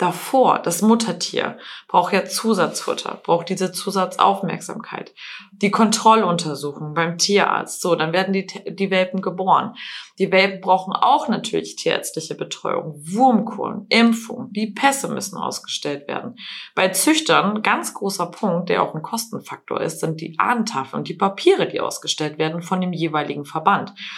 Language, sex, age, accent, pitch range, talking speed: German, female, 20-39, German, 155-205 Hz, 140 wpm